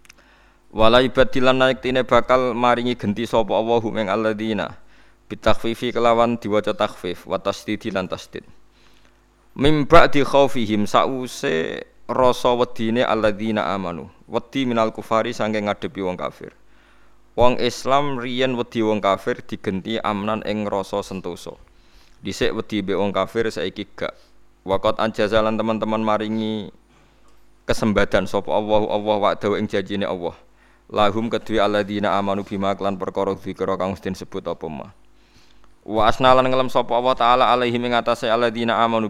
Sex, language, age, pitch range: male, Indonesian, 20-39, 100-120 Hz